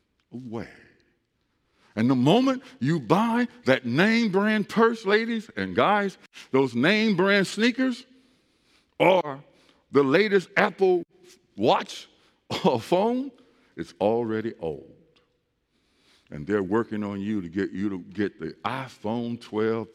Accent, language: American, English